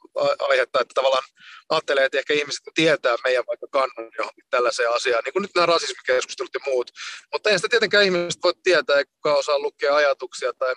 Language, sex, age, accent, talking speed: Finnish, male, 30-49, native, 180 wpm